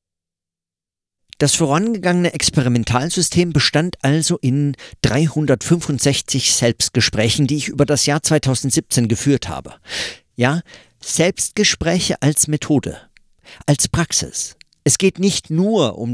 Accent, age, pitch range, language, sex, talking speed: German, 50-69, 115-160 Hz, German, male, 100 wpm